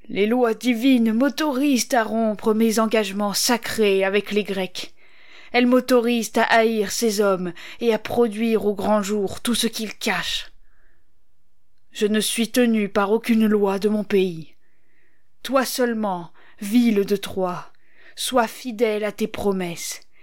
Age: 20-39